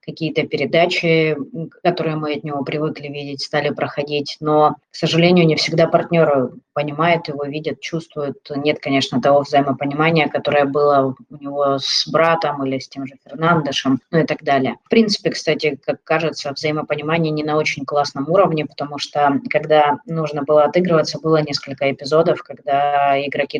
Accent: native